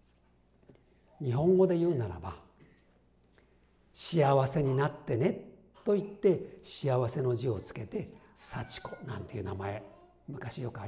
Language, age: Japanese, 60-79